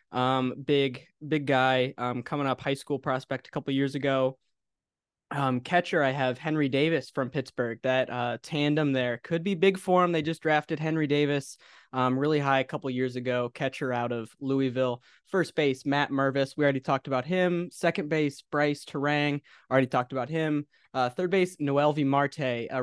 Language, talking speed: English, 185 wpm